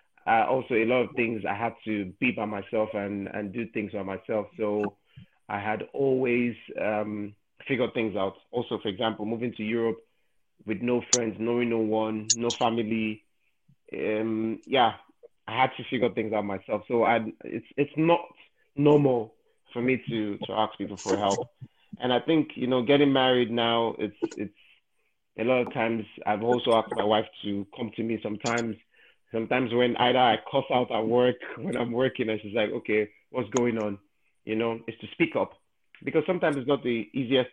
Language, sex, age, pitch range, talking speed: English, male, 30-49, 105-125 Hz, 185 wpm